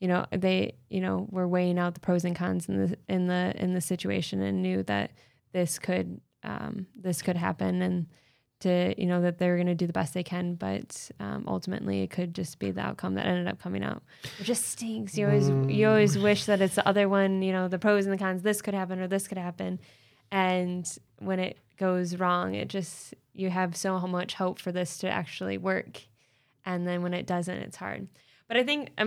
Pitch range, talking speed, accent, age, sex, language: 170-195 Hz, 230 wpm, American, 10-29, female, English